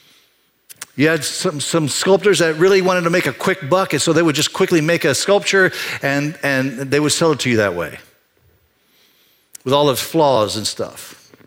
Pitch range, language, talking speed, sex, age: 145-190 Hz, English, 200 wpm, male, 50-69